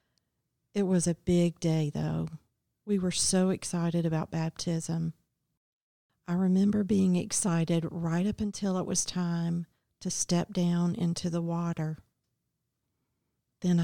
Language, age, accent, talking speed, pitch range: English, 50-69, American, 125 wpm, 160-185 Hz